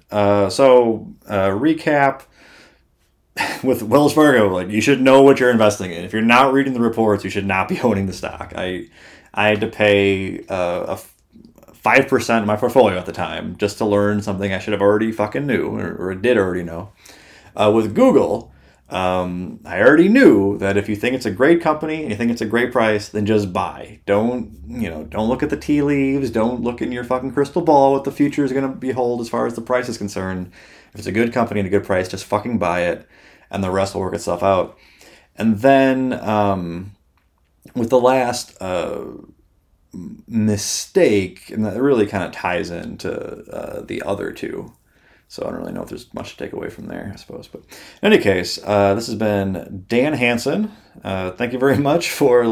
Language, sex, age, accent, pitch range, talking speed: English, male, 30-49, American, 100-125 Hz, 210 wpm